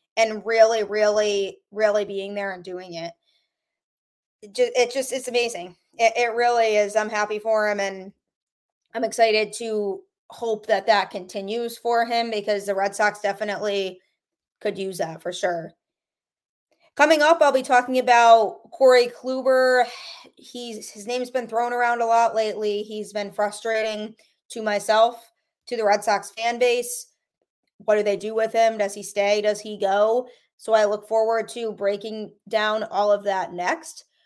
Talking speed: 165 wpm